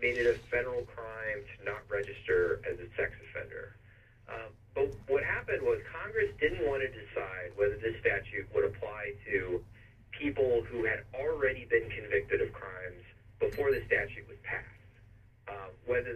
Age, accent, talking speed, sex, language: 40-59, American, 160 wpm, male, English